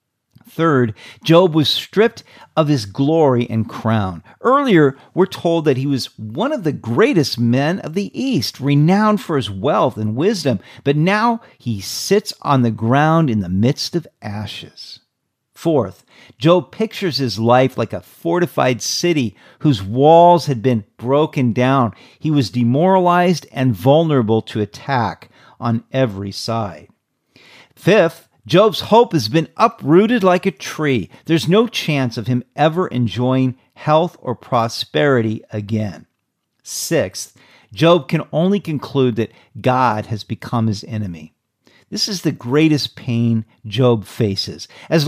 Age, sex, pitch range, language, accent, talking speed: 50-69, male, 120-165 Hz, English, American, 140 wpm